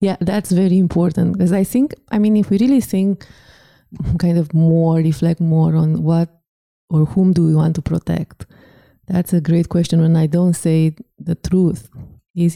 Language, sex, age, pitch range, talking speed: English, female, 20-39, 150-170 Hz, 180 wpm